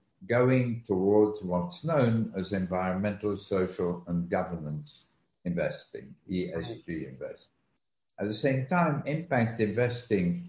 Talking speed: 105 wpm